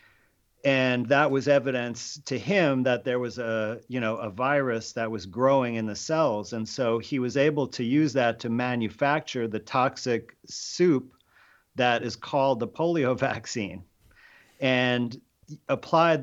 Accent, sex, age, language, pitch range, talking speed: American, male, 40-59, English, 115-150 Hz, 150 wpm